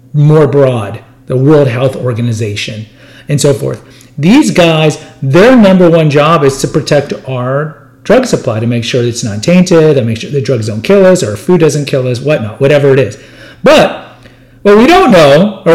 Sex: male